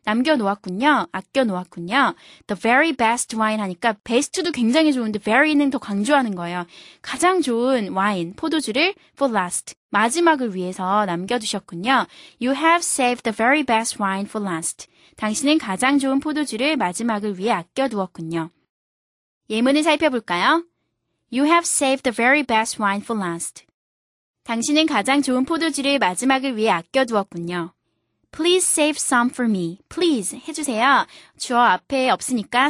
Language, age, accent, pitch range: Korean, 20-39, native, 200-285 Hz